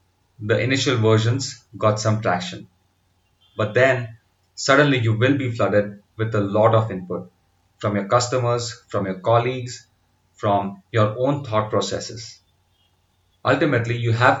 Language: English